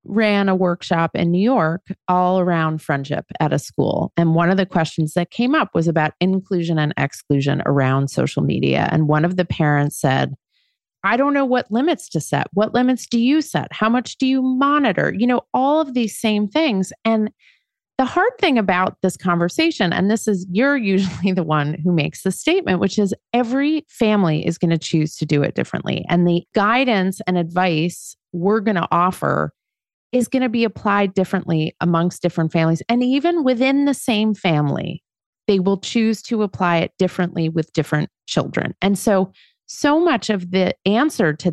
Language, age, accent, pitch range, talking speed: English, 30-49, American, 170-245 Hz, 190 wpm